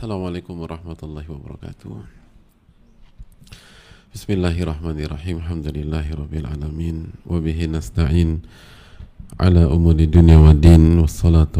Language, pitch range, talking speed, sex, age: Indonesian, 80-85 Hz, 70 wpm, male, 40-59